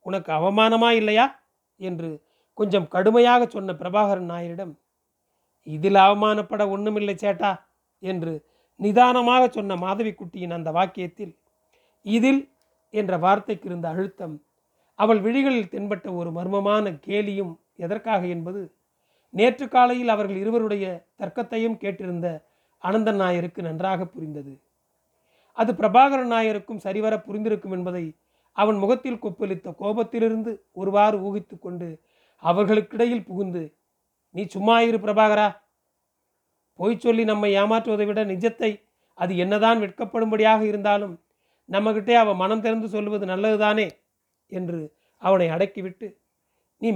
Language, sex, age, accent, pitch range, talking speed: Tamil, male, 40-59, native, 180-220 Hz, 100 wpm